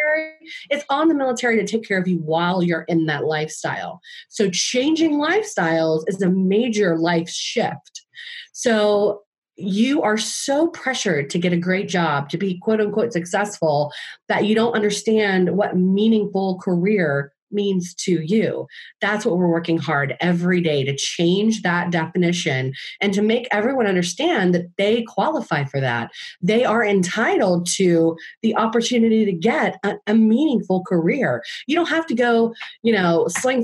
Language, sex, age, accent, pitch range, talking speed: English, female, 30-49, American, 175-240 Hz, 155 wpm